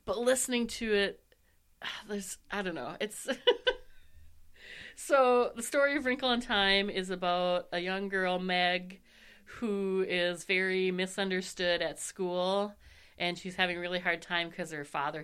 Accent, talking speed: American, 140 wpm